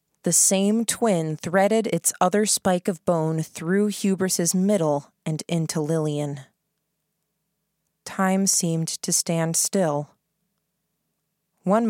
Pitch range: 160-195 Hz